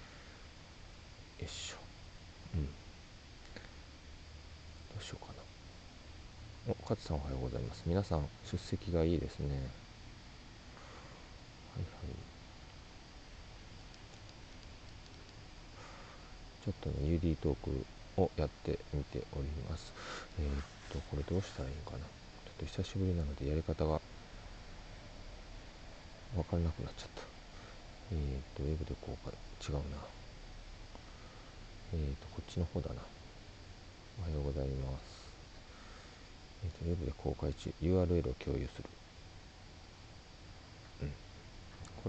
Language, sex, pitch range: Japanese, male, 80-100 Hz